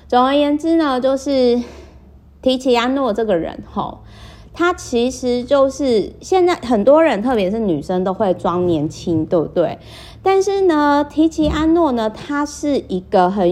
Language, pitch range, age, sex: Chinese, 175-270 Hz, 30-49, female